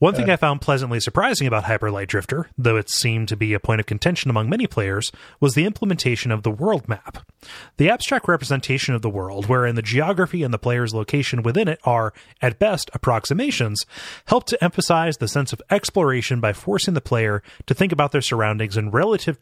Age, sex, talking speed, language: 30-49, male, 200 wpm, English